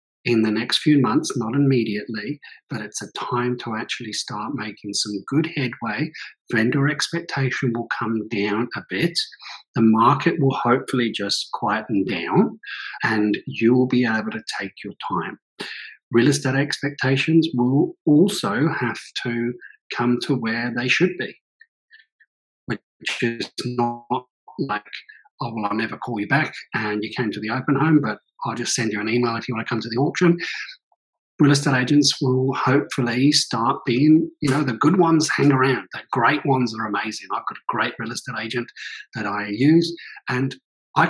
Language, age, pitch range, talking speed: English, 40-59, 120-150 Hz, 170 wpm